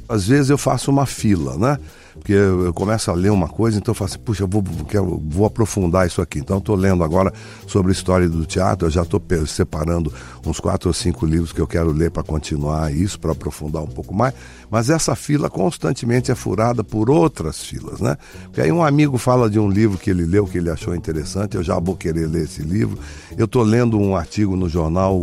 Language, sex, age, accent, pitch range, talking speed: Portuguese, male, 60-79, Brazilian, 85-120 Hz, 235 wpm